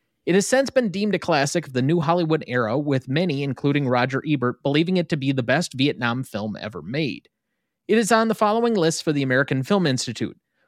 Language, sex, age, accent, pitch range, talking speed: English, male, 30-49, American, 125-175 Hz, 215 wpm